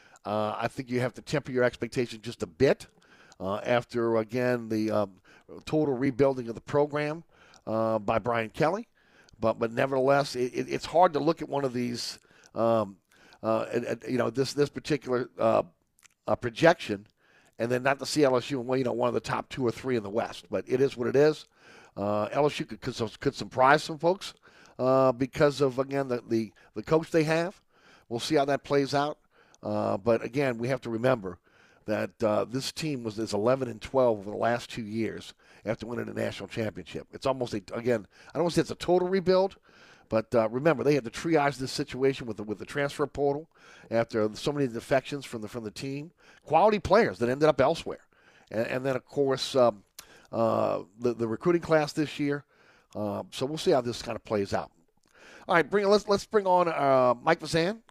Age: 50-69